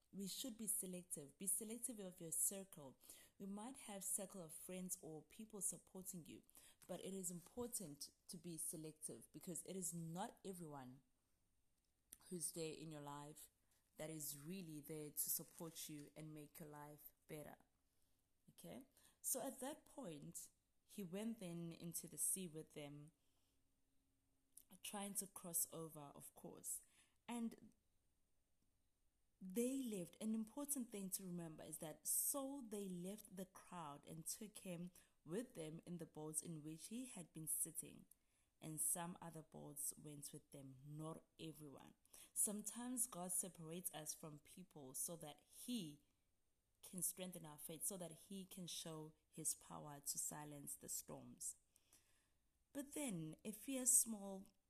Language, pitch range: English, 150-195 Hz